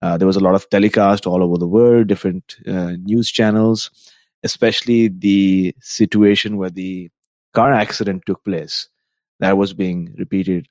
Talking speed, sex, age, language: 155 wpm, male, 30-49, English